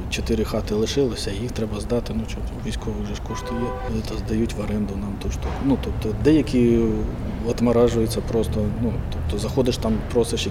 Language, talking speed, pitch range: Ukrainian, 165 wpm, 105-120 Hz